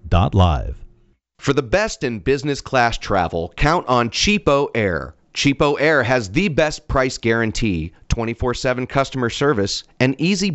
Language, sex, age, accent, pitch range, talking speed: English, male, 40-59, American, 105-140 Hz, 130 wpm